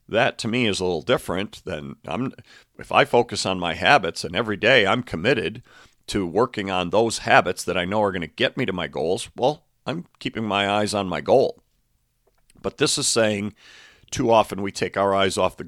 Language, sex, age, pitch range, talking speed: English, male, 50-69, 90-115 Hz, 210 wpm